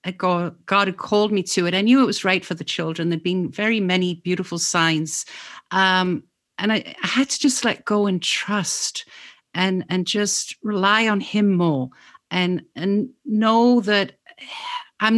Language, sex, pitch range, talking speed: English, female, 170-220 Hz, 170 wpm